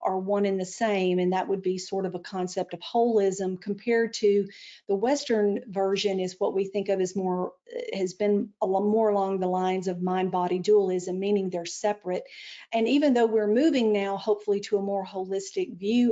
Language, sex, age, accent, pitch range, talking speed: English, female, 50-69, American, 190-220 Hz, 190 wpm